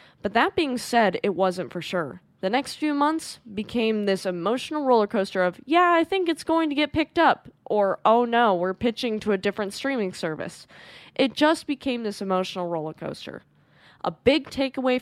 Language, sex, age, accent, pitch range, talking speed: English, female, 10-29, American, 185-245 Hz, 190 wpm